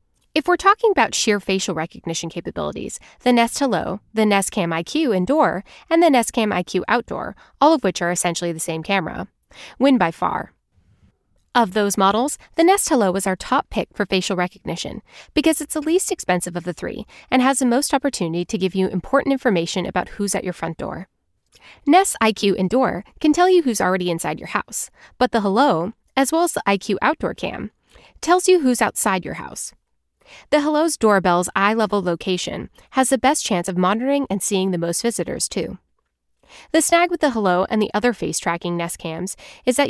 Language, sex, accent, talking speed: English, female, American, 190 wpm